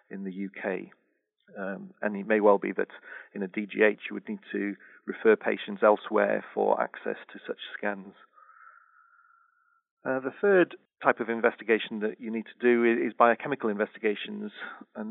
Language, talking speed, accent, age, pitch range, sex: English, 160 wpm, British, 40-59, 105-140 Hz, male